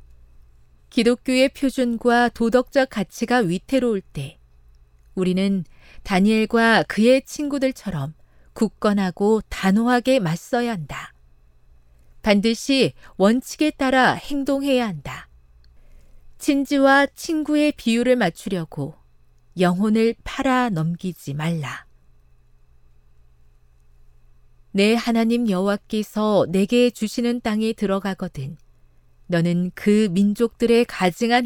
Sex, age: female, 40-59